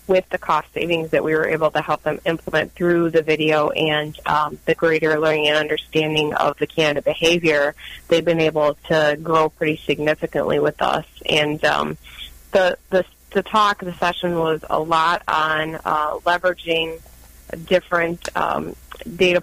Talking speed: 160 wpm